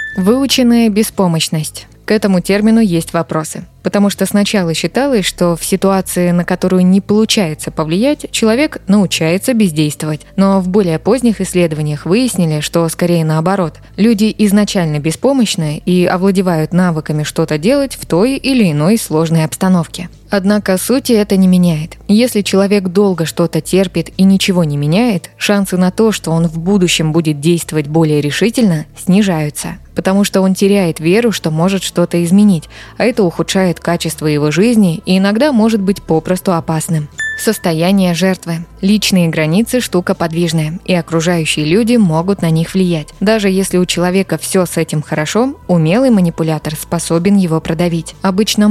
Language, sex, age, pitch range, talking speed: Russian, female, 20-39, 165-205 Hz, 145 wpm